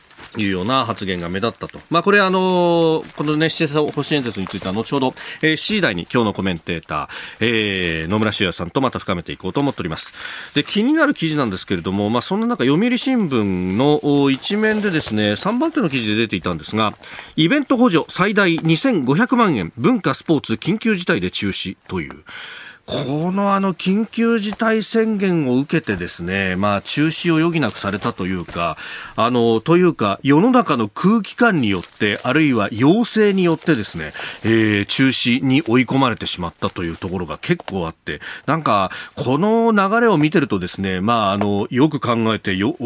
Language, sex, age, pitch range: Japanese, male, 40-59, 105-175 Hz